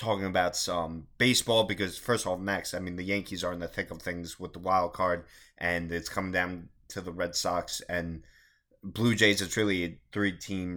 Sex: male